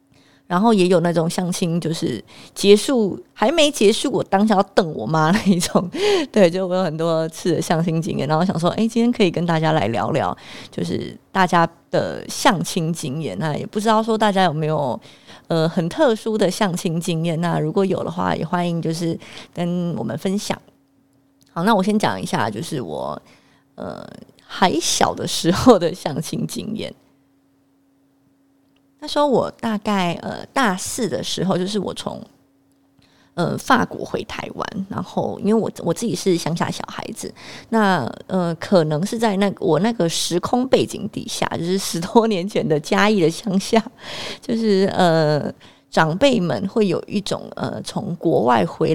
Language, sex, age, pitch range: Chinese, female, 20-39, 160-205 Hz